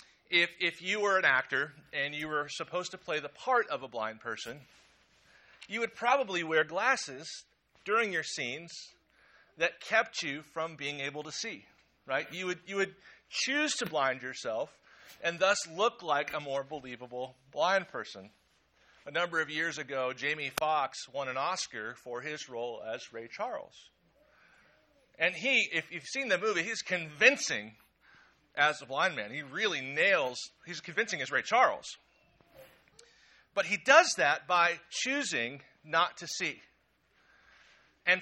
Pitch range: 145-210 Hz